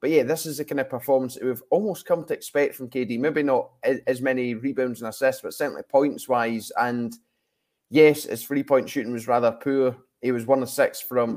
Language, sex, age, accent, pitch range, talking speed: English, male, 20-39, British, 120-140 Hz, 220 wpm